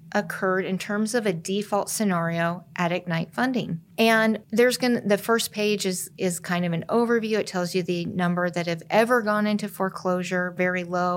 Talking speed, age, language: 190 wpm, 40-59, English